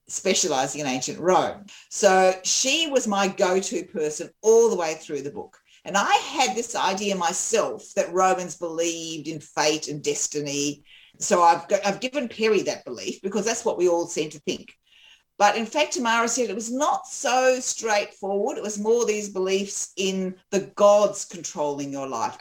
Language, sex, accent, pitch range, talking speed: English, female, Australian, 165-220 Hz, 175 wpm